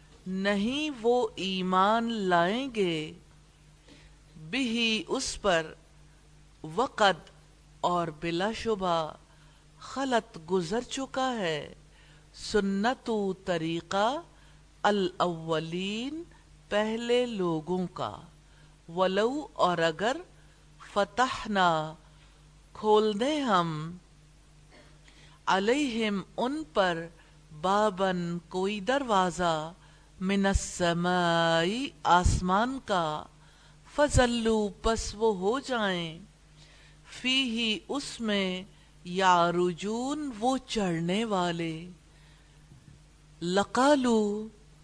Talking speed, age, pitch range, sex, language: 70 wpm, 50-69, 165-230 Hz, female, English